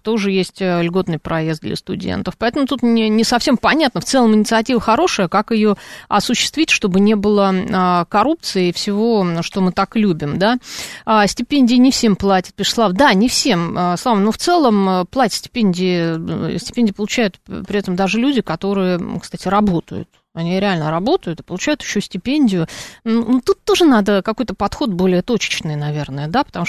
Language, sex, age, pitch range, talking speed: Russian, female, 30-49, 175-225 Hz, 165 wpm